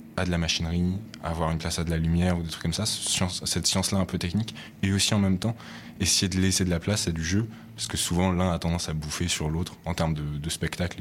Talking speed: 280 wpm